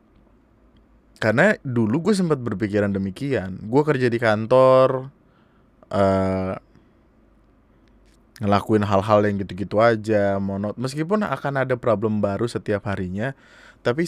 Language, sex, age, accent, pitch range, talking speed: Indonesian, male, 20-39, native, 105-140 Hz, 105 wpm